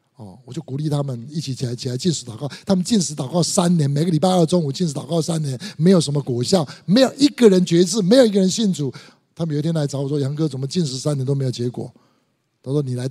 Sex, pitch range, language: male, 140-205 Hz, Chinese